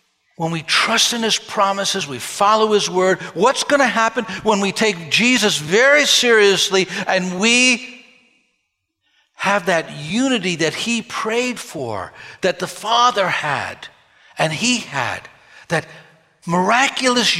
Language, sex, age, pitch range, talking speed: English, male, 60-79, 170-225 Hz, 130 wpm